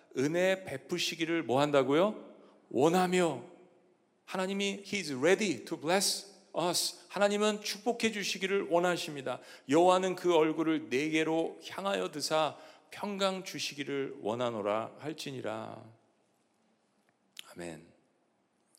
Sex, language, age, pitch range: male, Korean, 40-59, 125-175 Hz